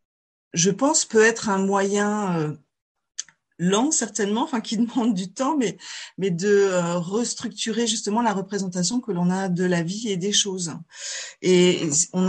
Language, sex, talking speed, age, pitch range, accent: French, female, 150 wpm, 40-59, 170-210 Hz, French